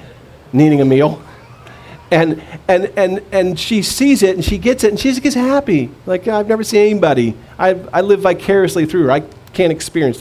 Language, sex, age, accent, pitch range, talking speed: English, male, 40-59, American, 125-180 Hz, 195 wpm